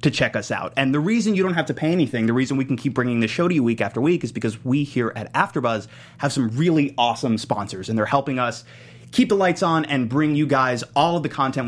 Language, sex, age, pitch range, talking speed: English, male, 30-49, 115-150 Hz, 270 wpm